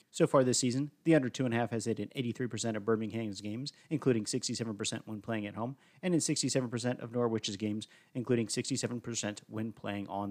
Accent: American